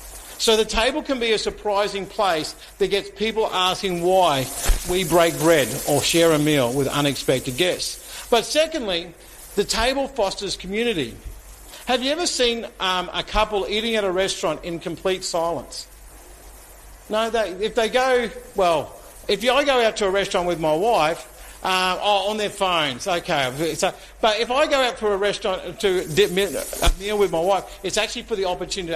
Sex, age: male, 50-69